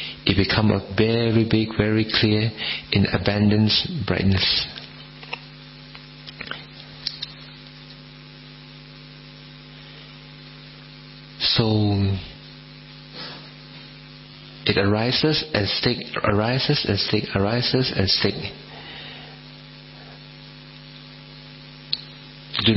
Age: 50-69